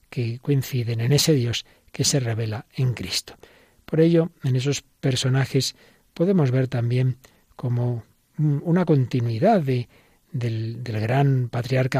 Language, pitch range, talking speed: Spanish, 120-145 Hz, 125 wpm